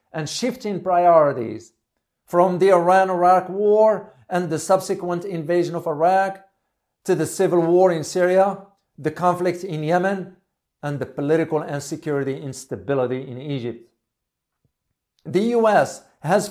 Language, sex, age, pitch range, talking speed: English, male, 50-69, 145-190 Hz, 125 wpm